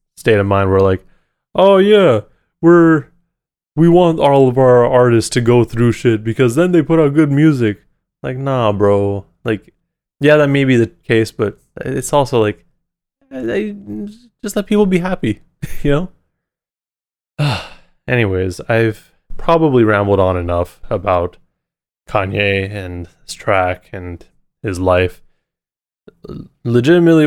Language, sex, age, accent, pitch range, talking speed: English, male, 20-39, American, 100-140 Hz, 135 wpm